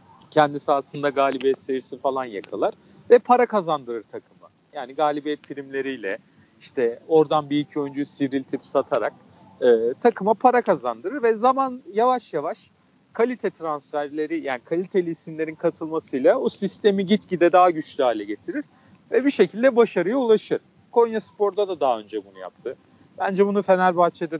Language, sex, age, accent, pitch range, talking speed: Turkish, male, 40-59, native, 145-200 Hz, 140 wpm